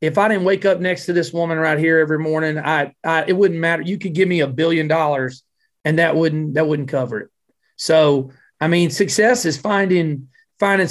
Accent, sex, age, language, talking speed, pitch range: American, male, 40-59, English, 215 wpm, 155-190 Hz